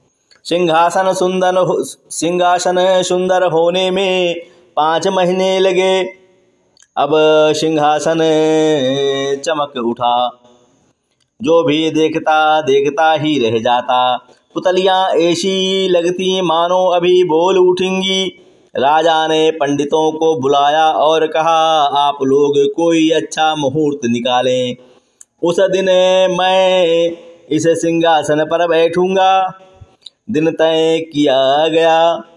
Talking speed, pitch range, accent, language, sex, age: 95 wpm, 150-185 Hz, native, Hindi, male, 30-49